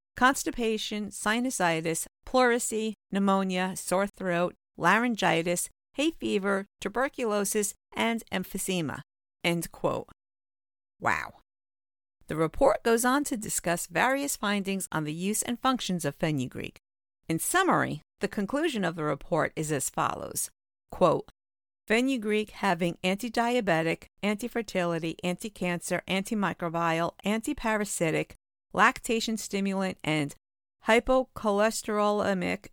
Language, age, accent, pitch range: English, 50-69, American, 170-220 Hz